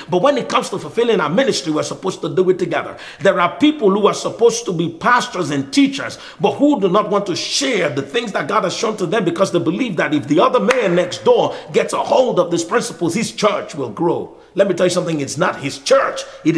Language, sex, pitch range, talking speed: English, male, 140-210 Hz, 255 wpm